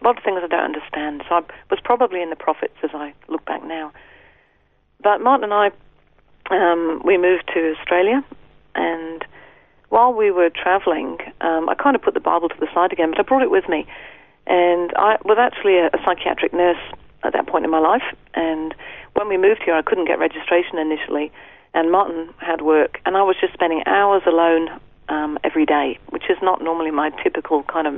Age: 40-59